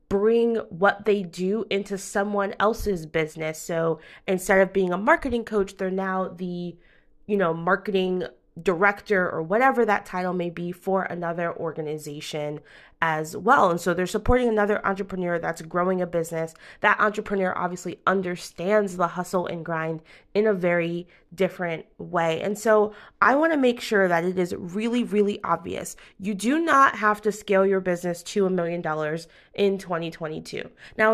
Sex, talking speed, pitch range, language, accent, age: female, 160 wpm, 175-210 Hz, English, American, 20-39